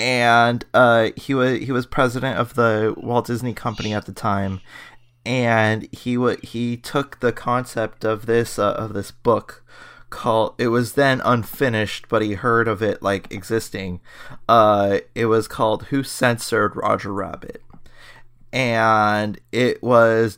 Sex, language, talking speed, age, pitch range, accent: male, English, 150 wpm, 20-39, 110-125 Hz, American